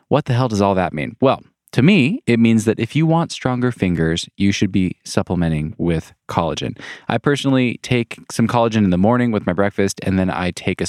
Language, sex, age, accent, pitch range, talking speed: English, male, 20-39, American, 90-125 Hz, 220 wpm